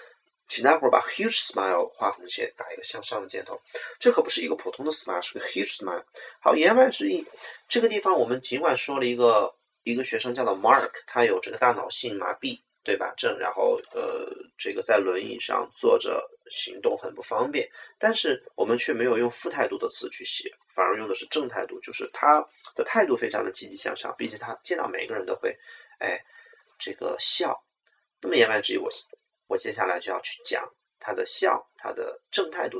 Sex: male